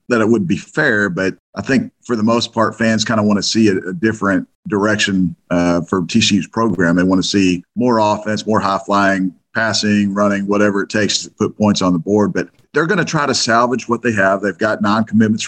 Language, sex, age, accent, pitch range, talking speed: English, male, 40-59, American, 100-115 Hz, 225 wpm